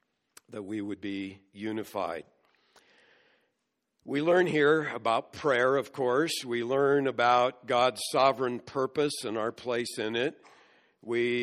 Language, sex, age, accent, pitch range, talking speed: English, male, 60-79, American, 120-140 Hz, 125 wpm